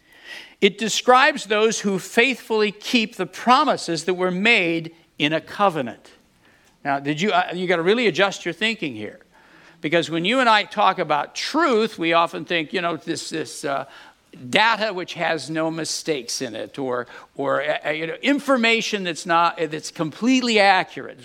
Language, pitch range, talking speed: English, 155-210 Hz, 170 wpm